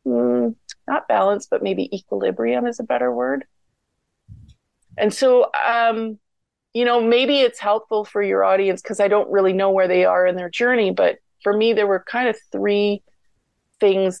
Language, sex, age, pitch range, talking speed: English, female, 30-49, 155-210 Hz, 175 wpm